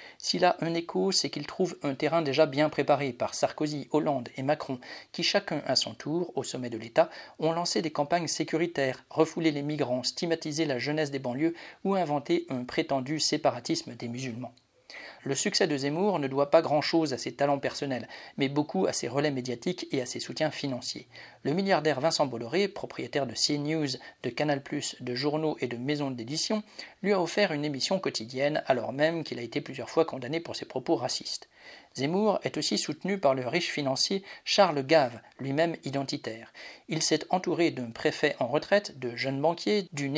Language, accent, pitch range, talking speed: French, French, 135-165 Hz, 185 wpm